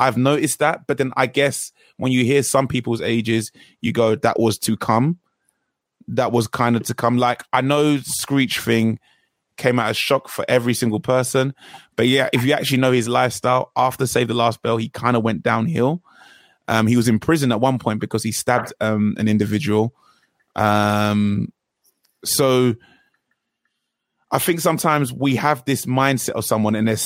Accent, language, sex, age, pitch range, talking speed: British, English, male, 20-39, 110-130 Hz, 185 wpm